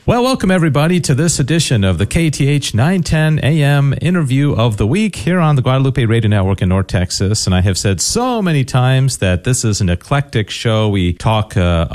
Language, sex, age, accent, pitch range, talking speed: English, male, 40-59, American, 90-130 Hz, 200 wpm